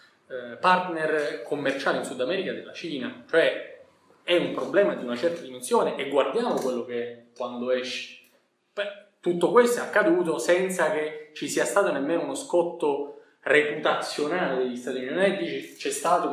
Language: Italian